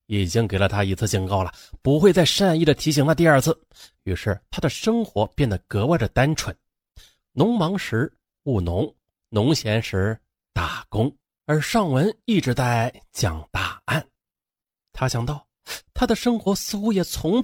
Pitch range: 105-175 Hz